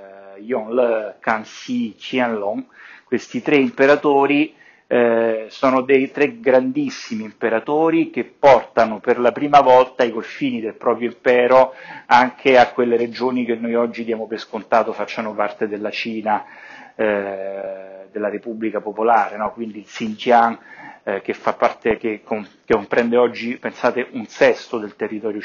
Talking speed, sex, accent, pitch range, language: 140 wpm, male, native, 105-135 Hz, Italian